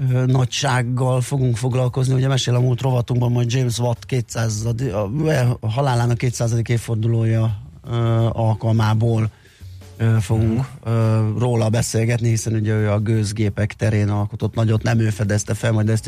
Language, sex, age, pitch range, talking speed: Hungarian, male, 30-49, 110-125 Hz, 135 wpm